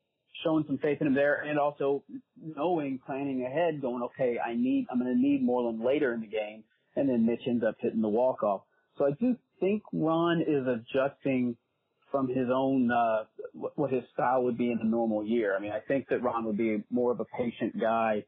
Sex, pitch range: male, 115-145 Hz